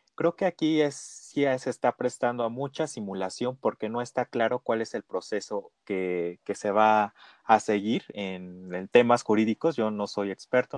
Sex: male